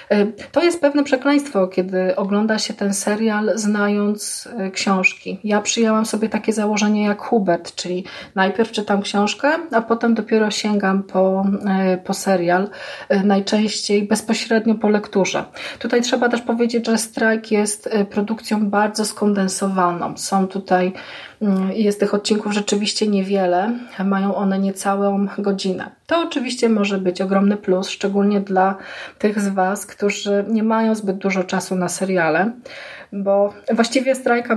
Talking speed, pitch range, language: 130 wpm, 195-220 Hz, Polish